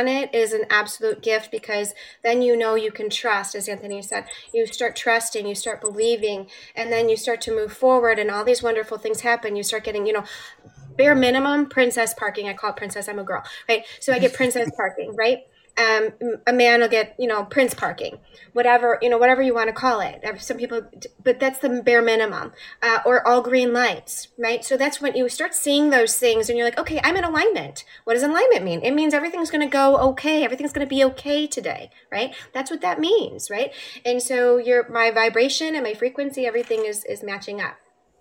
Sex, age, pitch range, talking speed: female, 20-39, 220-265 Hz, 220 wpm